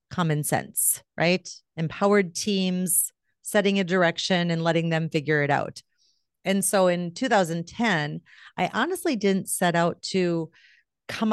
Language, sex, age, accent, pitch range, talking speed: English, female, 40-59, American, 160-200 Hz, 130 wpm